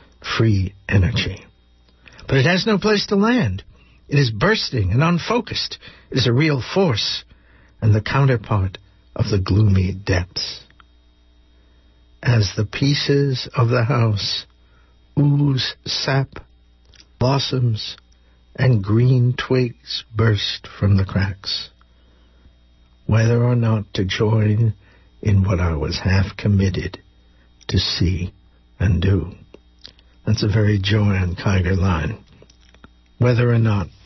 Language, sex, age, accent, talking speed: English, male, 60-79, American, 120 wpm